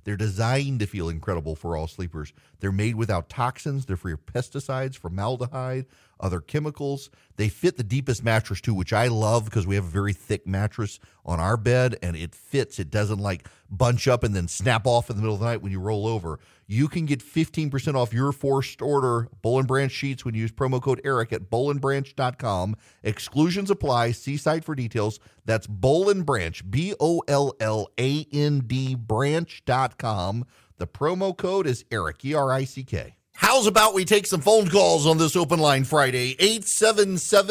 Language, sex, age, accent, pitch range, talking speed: English, male, 40-59, American, 105-160 Hz, 170 wpm